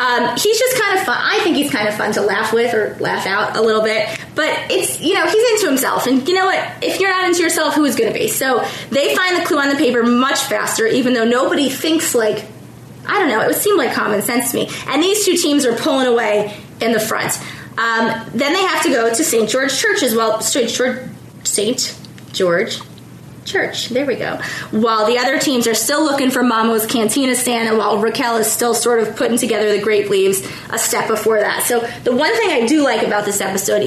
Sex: female